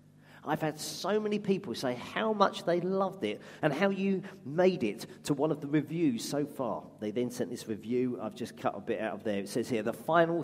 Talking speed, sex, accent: 235 wpm, male, British